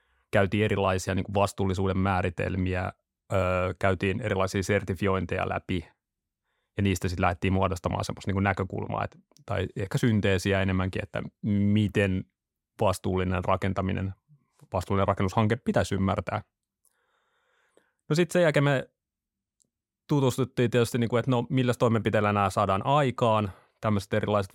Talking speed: 105 wpm